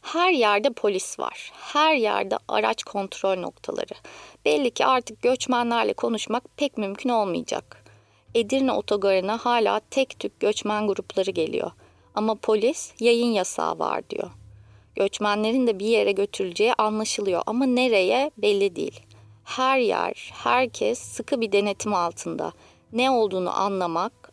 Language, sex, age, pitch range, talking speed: Turkish, female, 30-49, 190-250 Hz, 125 wpm